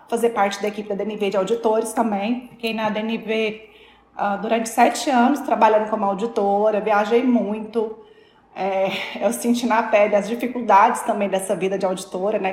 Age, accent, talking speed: 20-39, Brazilian, 165 wpm